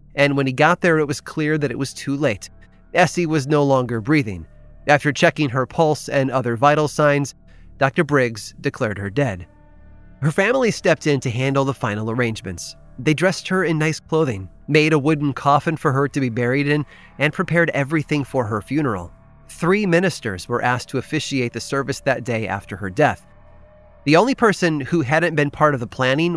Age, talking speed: 30-49, 195 wpm